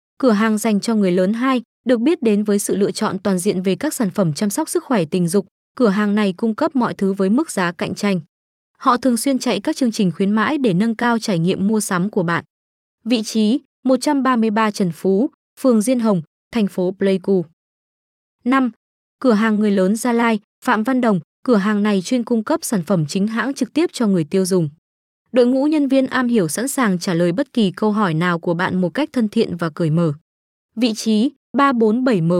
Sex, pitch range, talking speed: female, 190-245 Hz, 220 wpm